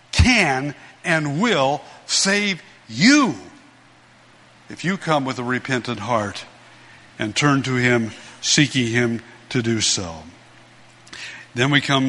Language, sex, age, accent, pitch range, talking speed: English, male, 60-79, American, 120-145 Hz, 120 wpm